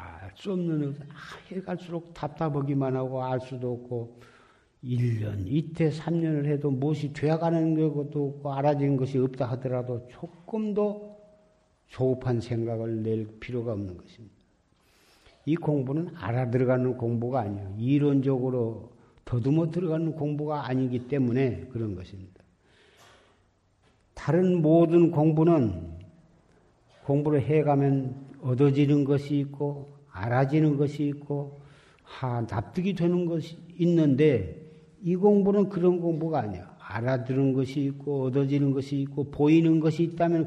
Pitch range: 125-165 Hz